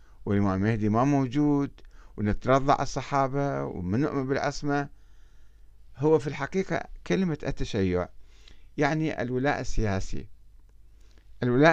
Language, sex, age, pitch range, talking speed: Arabic, male, 50-69, 105-155 Hz, 85 wpm